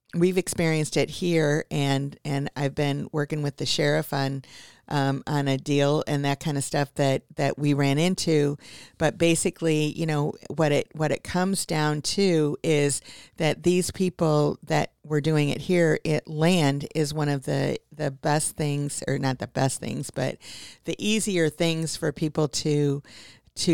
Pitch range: 140-160 Hz